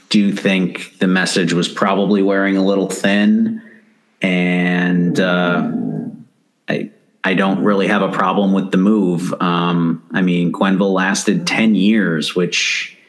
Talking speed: 140 wpm